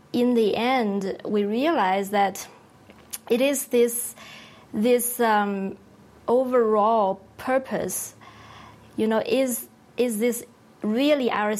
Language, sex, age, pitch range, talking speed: English, female, 20-39, 205-240 Hz, 105 wpm